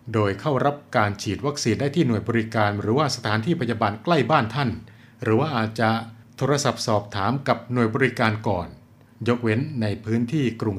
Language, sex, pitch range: Thai, male, 105-125 Hz